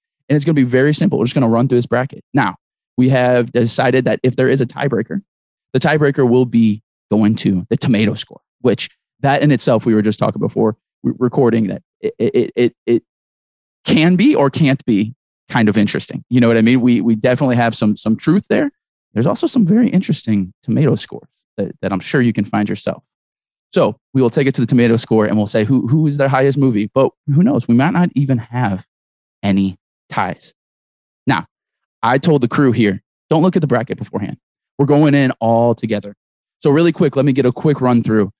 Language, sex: English, male